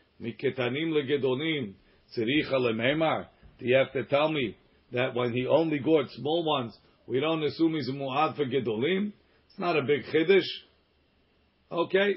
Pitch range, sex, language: 130-175 Hz, male, English